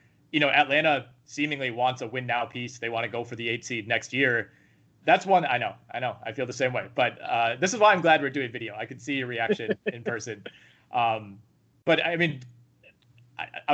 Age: 20-39